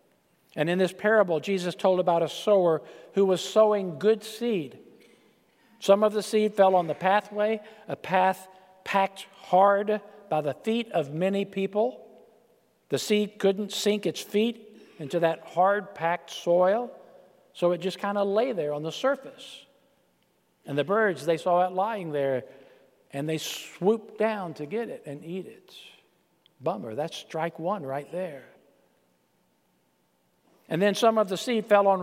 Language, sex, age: English, male, 50-69